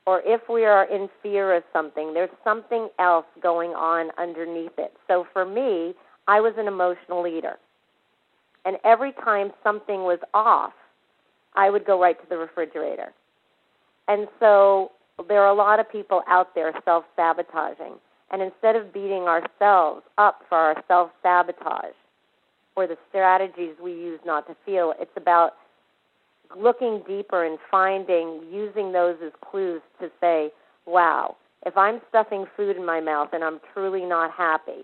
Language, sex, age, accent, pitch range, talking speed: English, female, 40-59, American, 165-200 Hz, 155 wpm